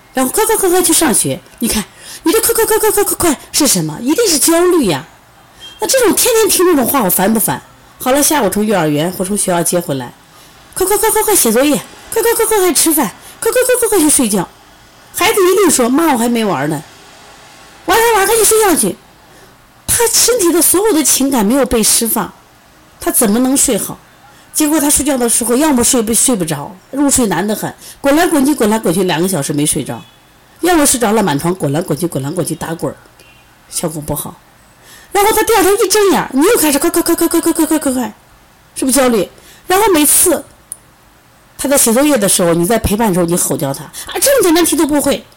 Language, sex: Chinese, female